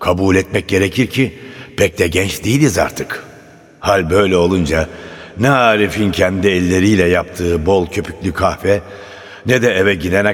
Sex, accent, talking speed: male, native, 140 wpm